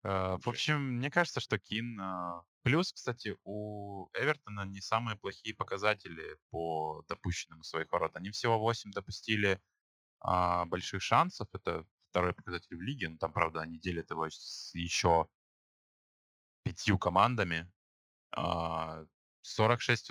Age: 20-39